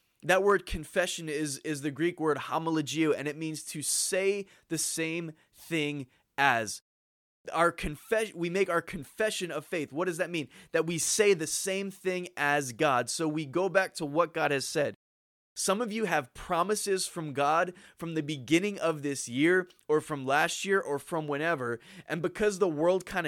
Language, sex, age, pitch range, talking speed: English, male, 20-39, 150-185 Hz, 185 wpm